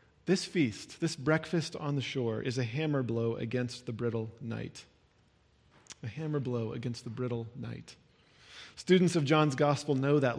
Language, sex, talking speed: English, male, 160 wpm